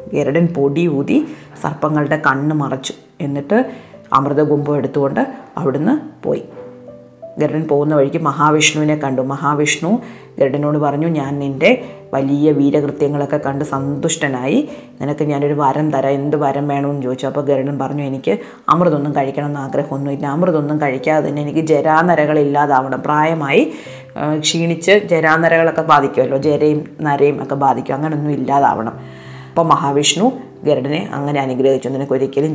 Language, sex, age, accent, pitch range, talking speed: Malayalam, female, 30-49, native, 140-160 Hz, 110 wpm